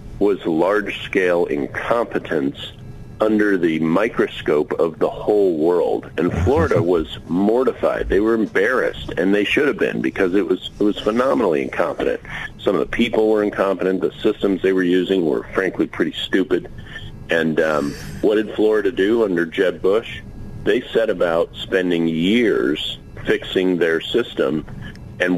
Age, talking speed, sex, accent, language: 50-69, 145 wpm, male, American, English